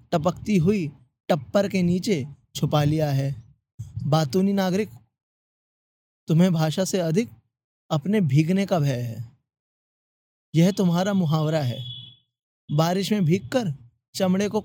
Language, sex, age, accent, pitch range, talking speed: Hindi, male, 20-39, native, 130-185 Hz, 115 wpm